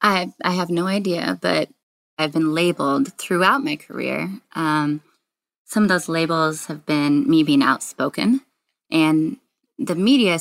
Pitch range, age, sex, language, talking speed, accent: 155-205 Hz, 20-39, female, English, 140 wpm, American